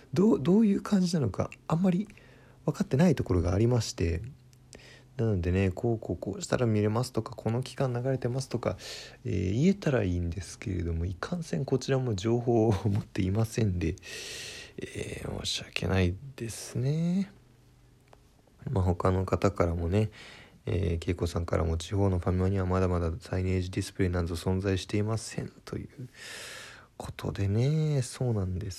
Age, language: 20-39, Japanese